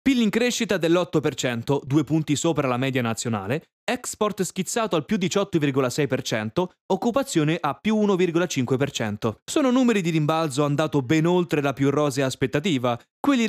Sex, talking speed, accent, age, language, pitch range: male, 140 wpm, native, 20-39, Italian, 140-200 Hz